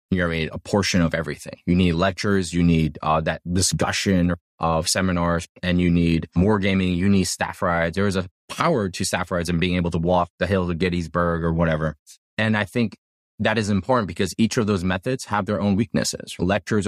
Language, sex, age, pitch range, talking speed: English, male, 20-39, 85-105 Hz, 215 wpm